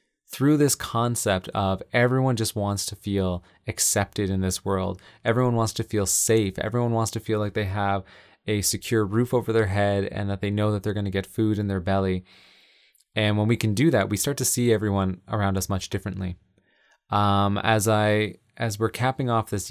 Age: 20-39